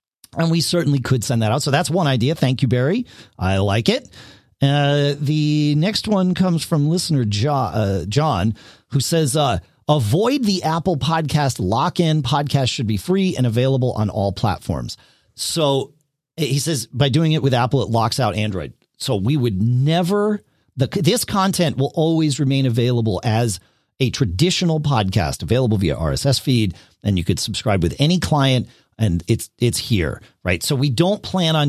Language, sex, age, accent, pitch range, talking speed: English, male, 40-59, American, 100-145 Hz, 170 wpm